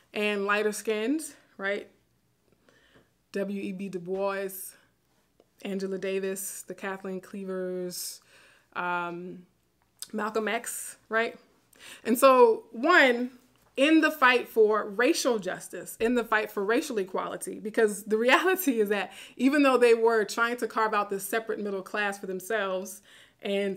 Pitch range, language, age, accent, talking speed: 195-230 Hz, English, 20-39, American, 125 wpm